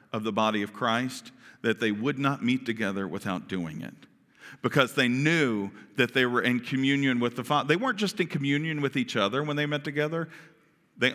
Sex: male